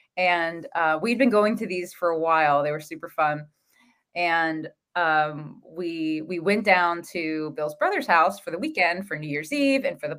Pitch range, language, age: 160-225 Hz, English, 20-39